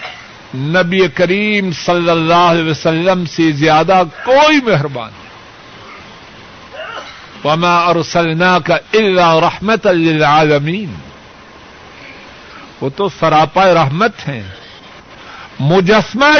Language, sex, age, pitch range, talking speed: Urdu, male, 50-69, 165-270 Hz, 80 wpm